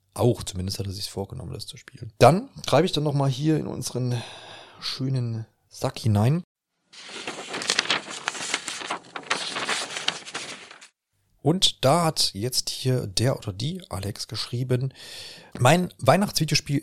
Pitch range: 105-145 Hz